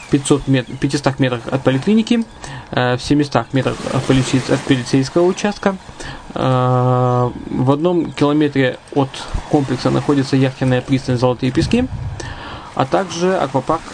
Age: 20-39